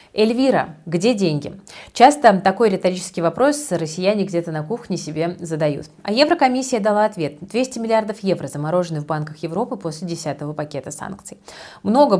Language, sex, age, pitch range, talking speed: Russian, female, 30-49, 165-205 Hz, 145 wpm